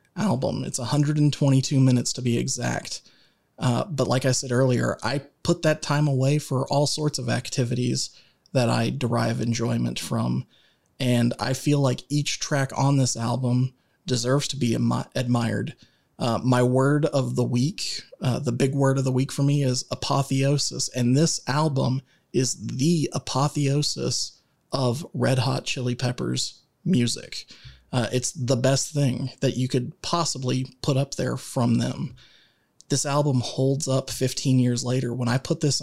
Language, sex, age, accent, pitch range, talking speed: English, male, 30-49, American, 125-150 Hz, 160 wpm